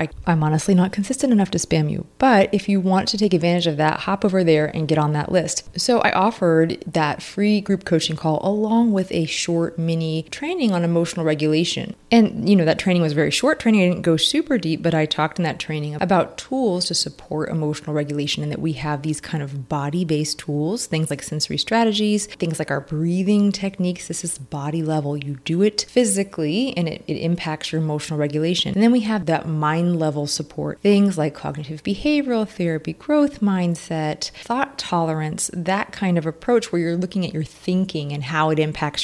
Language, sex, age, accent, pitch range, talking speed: English, female, 20-39, American, 155-200 Hz, 205 wpm